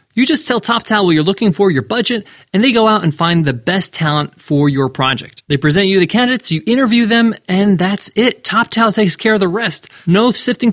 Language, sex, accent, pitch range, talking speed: English, male, American, 150-200 Hz, 230 wpm